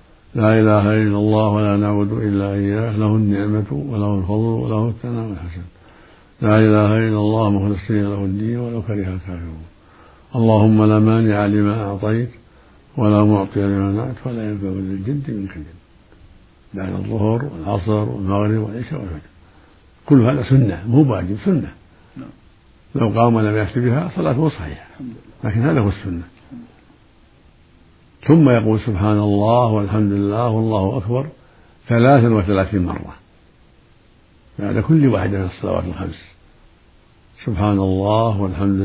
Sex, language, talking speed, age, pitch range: male, Arabic, 130 wpm, 60-79, 100-115 Hz